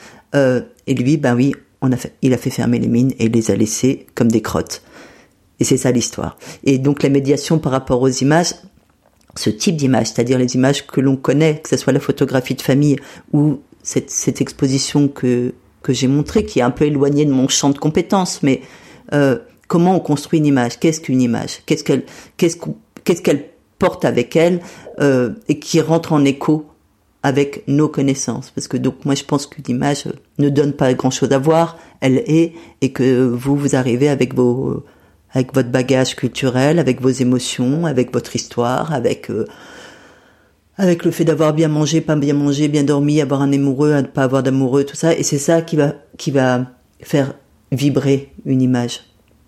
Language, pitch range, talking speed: French, 130-150 Hz, 195 wpm